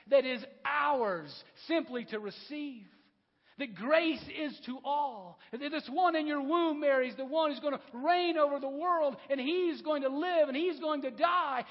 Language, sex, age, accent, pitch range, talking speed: English, male, 50-69, American, 195-295 Hz, 190 wpm